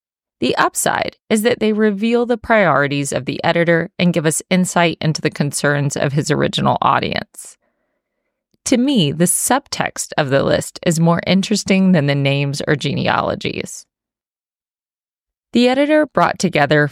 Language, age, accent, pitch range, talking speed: English, 20-39, American, 155-210 Hz, 145 wpm